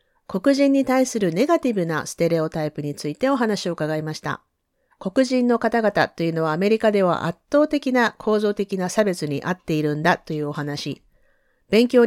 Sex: female